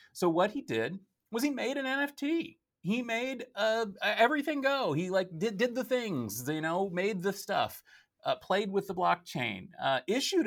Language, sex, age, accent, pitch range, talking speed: English, male, 30-49, American, 145-195 Hz, 185 wpm